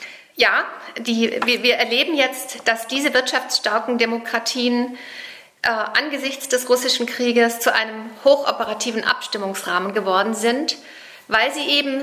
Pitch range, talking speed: 205-235 Hz, 115 wpm